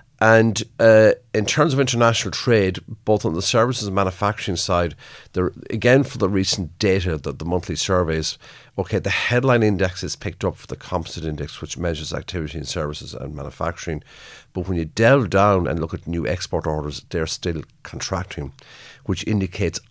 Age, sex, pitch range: 50-69, male, 80-105 Hz